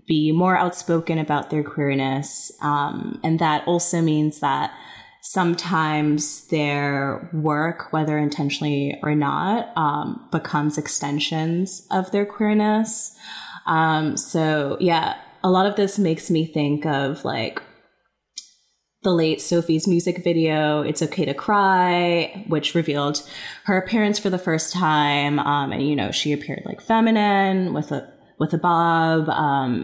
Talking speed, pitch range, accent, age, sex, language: 135 wpm, 145-175 Hz, American, 20-39, female, English